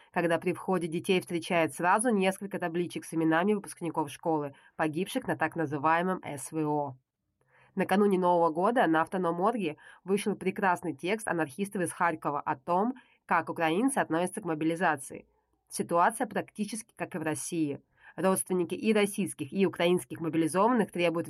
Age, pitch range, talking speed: 20-39, 155-190 Hz, 135 wpm